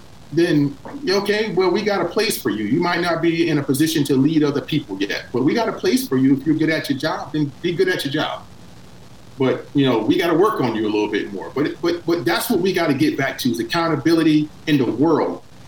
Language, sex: English, male